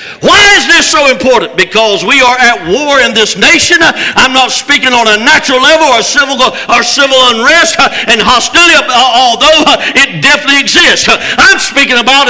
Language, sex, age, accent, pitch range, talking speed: English, male, 60-79, American, 220-310 Hz, 165 wpm